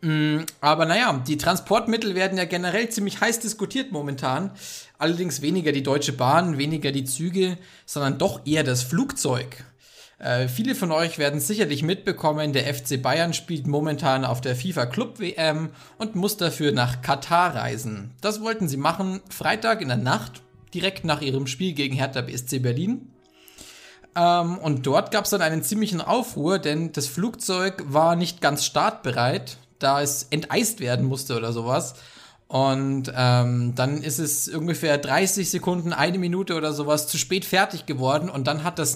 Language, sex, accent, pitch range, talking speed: German, male, German, 135-185 Hz, 160 wpm